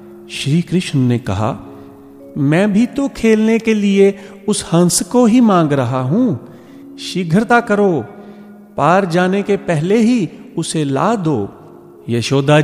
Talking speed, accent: 135 wpm, native